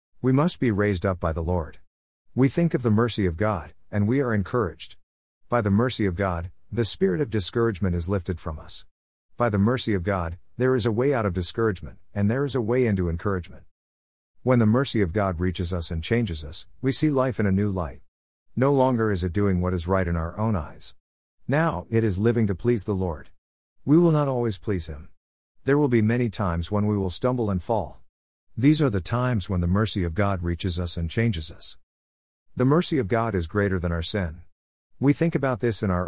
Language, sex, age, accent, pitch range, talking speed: English, male, 50-69, American, 85-120 Hz, 225 wpm